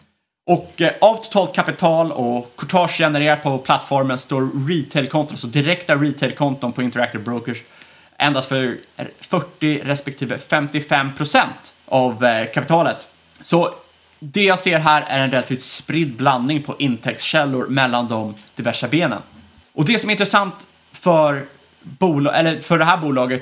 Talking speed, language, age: 135 wpm, Swedish, 30-49